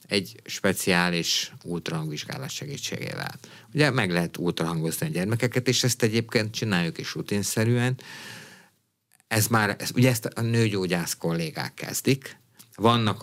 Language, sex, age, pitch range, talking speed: Hungarian, male, 50-69, 95-130 Hz, 110 wpm